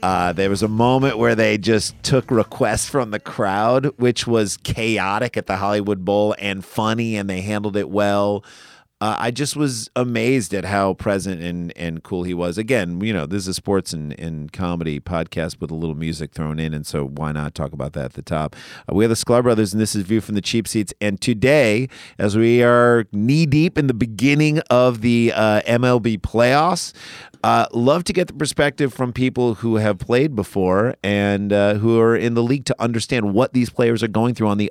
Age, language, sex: 40-59, English, male